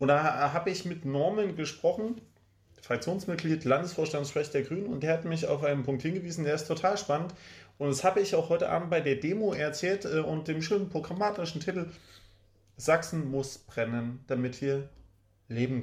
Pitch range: 130-180 Hz